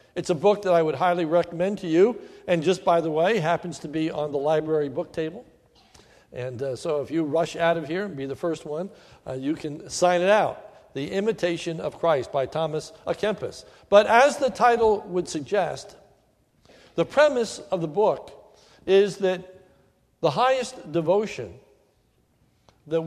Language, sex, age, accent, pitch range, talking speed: English, male, 60-79, American, 150-190 Hz, 175 wpm